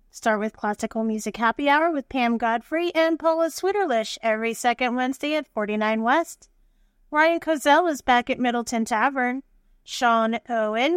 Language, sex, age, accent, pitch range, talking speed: English, female, 30-49, American, 225-290 Hz, 150 wpm